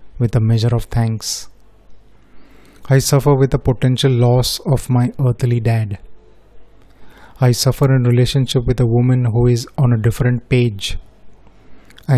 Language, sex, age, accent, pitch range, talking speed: Hindi, male, 30-49, native, 115-130 Hz, 145 wpm